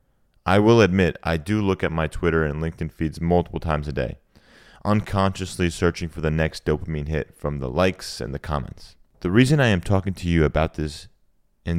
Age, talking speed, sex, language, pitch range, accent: 30-49, 200 wpm, male, English, 80-95 Hz, American